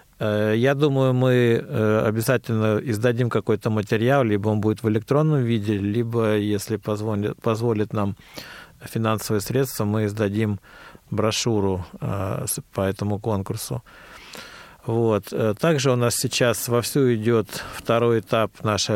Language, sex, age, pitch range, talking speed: Russian, male, 40-59, 105-125 Hz, 115 wpm